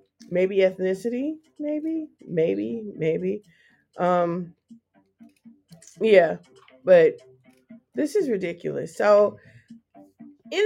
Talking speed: 75 wpm